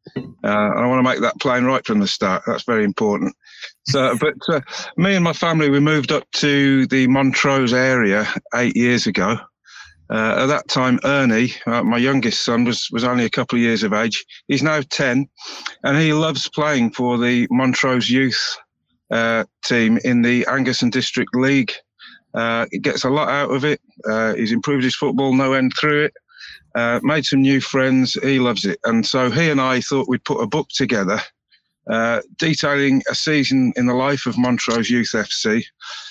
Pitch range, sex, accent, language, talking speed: 125-145 Hz, male, British, English, 195 wpm